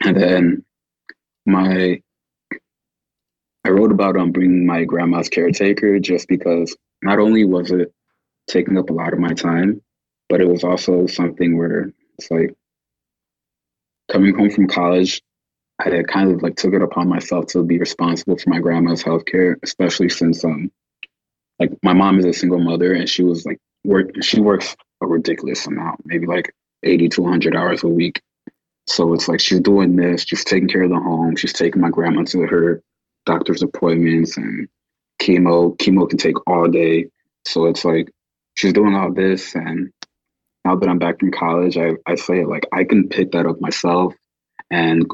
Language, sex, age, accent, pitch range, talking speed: English, male, 20-39, American, 85-90 Hz, 175 wpm